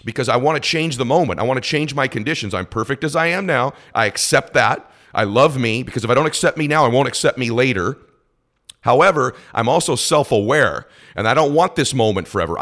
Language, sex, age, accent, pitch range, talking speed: English, male, 40-59, American, 110-140 Hz, 230 wpm